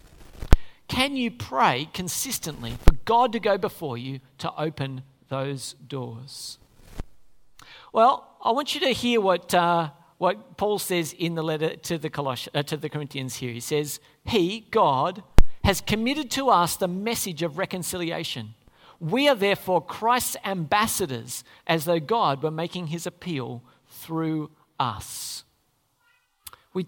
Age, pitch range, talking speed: 50-69, 135-190 Hz, 140 wpm